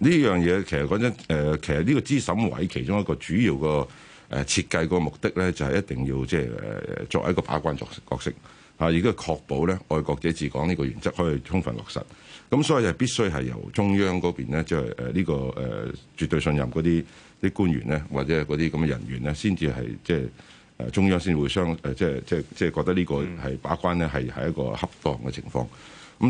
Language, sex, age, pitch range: Chinese, male, 60-79, 65-85 Hz